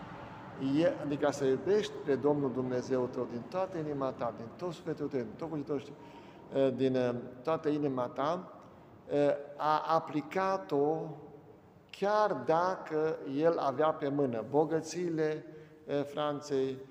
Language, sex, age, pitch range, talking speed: Romanian, male, 60-79, 130-170 Hz, 115 wpm